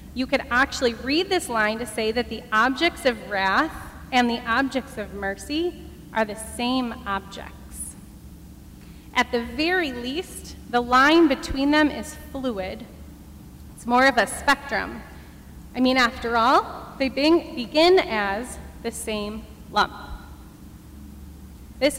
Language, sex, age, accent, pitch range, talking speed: English, female, 30-49, American, 205-270 Hz, 130 wpm